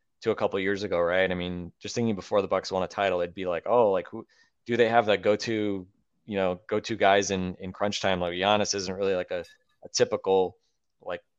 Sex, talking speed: male, 250 wpm